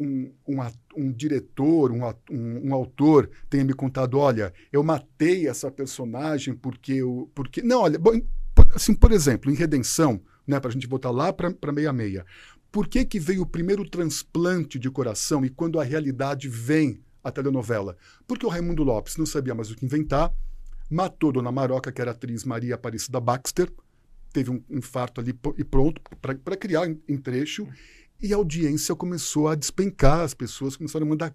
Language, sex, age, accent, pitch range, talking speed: Portuguese, male, 50-69, Brazilian, 125-155 Hz, 185 wpm